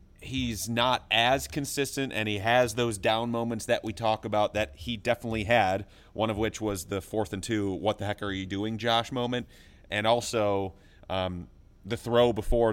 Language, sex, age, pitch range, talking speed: English, male, 30-49, 95-120 Hz, 190 wpm